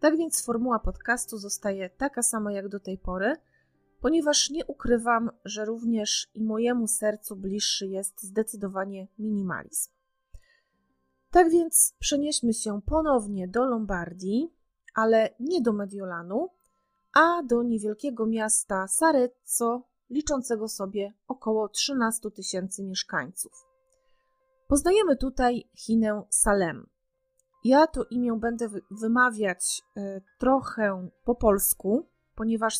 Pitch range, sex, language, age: 200-245 Hz, female, Polish, 30-49